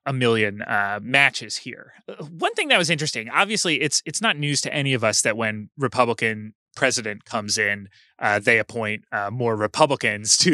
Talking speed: 180 wpm